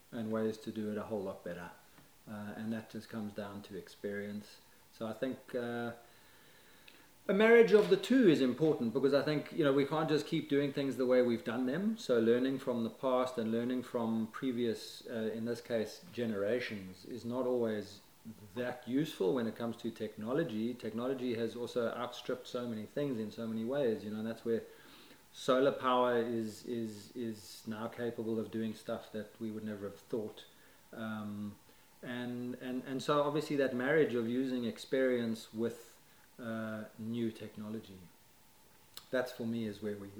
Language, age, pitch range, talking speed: English, 30-49, 110-125 Hz, 180 wpm